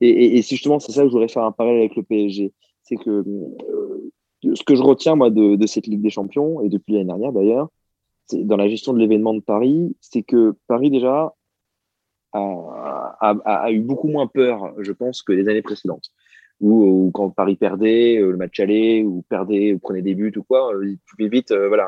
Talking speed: 215 wpm